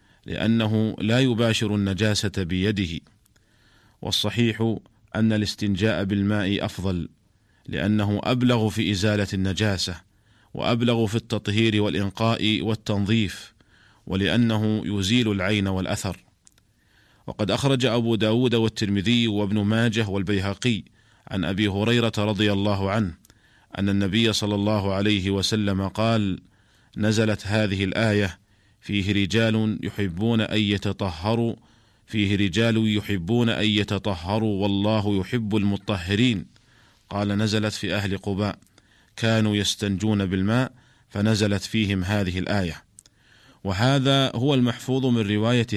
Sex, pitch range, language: male, 100-115 Hz, Arabic